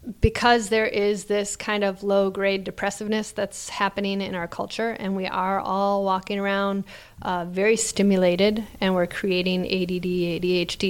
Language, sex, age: English, female, 30-49